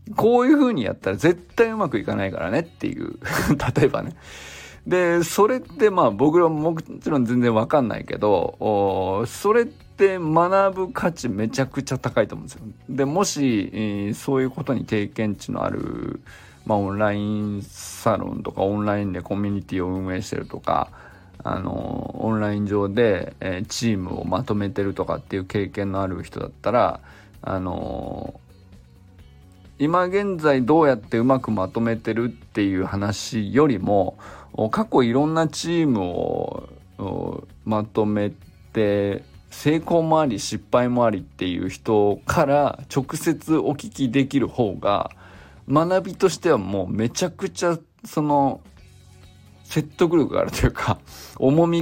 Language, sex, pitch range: Japanese, male, 100-160 Hz